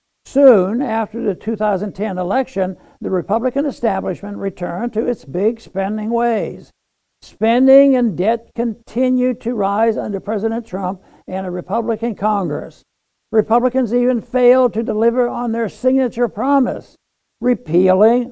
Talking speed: 120 wpm